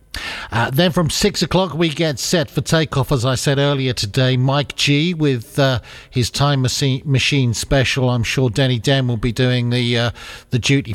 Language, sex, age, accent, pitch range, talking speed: English, male, 50-69, British, 125-155 Hz, 185 wpm